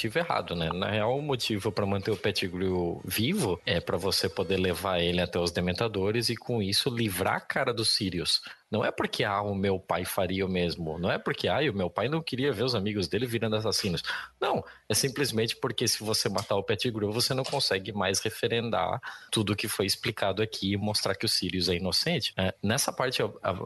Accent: Brazilian